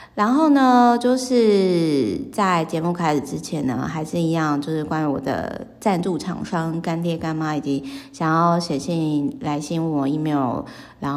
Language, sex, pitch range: Chinese, female, 150-185 Hz